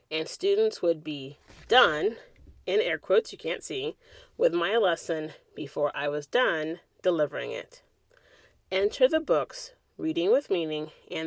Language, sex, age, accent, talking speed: English, female, 30-49, American, 145 wpm